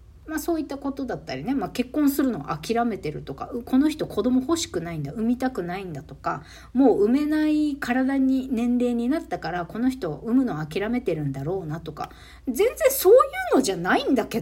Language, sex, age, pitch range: Japanese, female, 50-69, 180-290 Hz